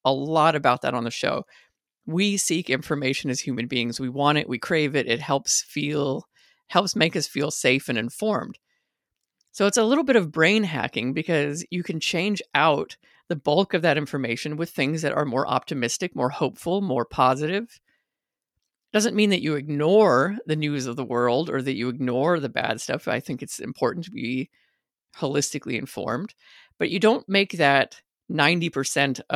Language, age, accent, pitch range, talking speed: English, 50-69, American, 130-180 Hz, 180 wpm